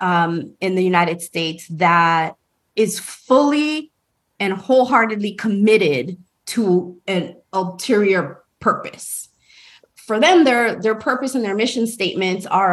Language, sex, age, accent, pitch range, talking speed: English, female, 20-39, American, 185-260 Hz, 120 wpm